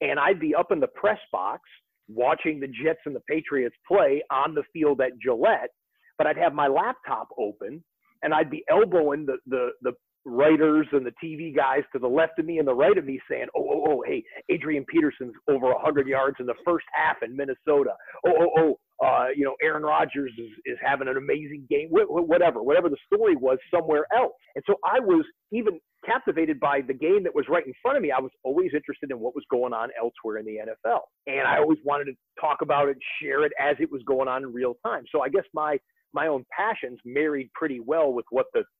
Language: English